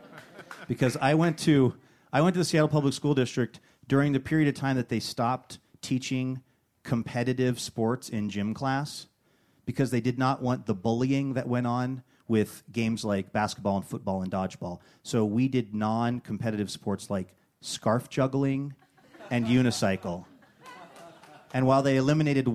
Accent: American